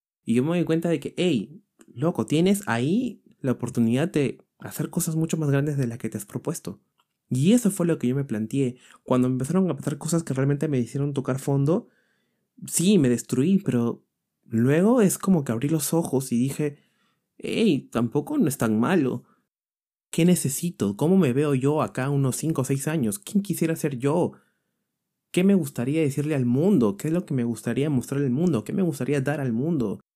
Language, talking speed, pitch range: Spanish, 200 wpm, 125-165 Hz